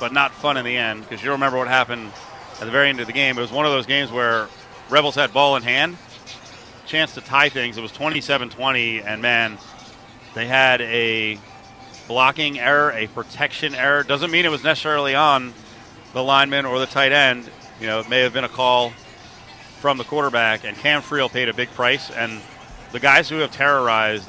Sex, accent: male, American